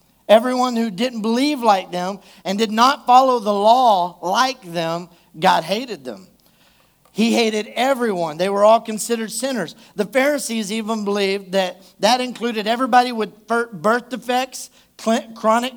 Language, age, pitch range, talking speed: English, 50-69, 185-235 Hz, 140 wpm